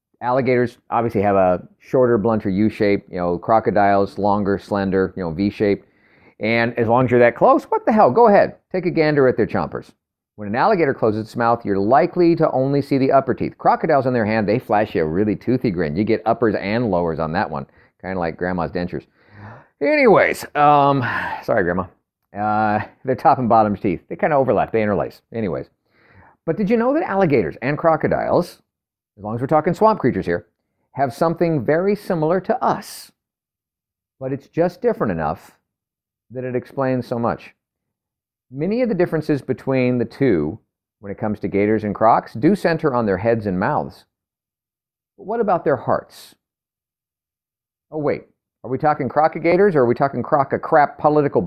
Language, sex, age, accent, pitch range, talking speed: English, male, 40-59, American, 100-150 Hz, 185 wpm